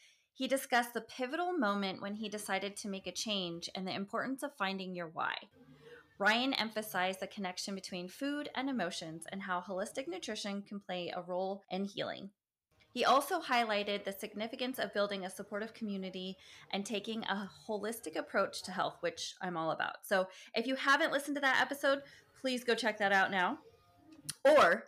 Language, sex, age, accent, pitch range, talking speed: English, female, 20-39, American, 185-245 Hz, 175 wpm